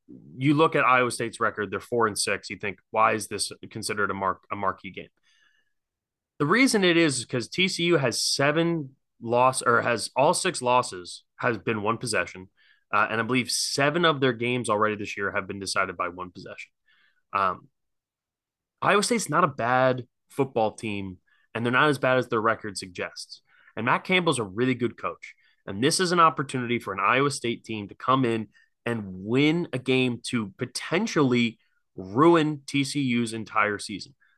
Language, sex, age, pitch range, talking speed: English, male, 20-39, 115-150 Hz, 180 wpm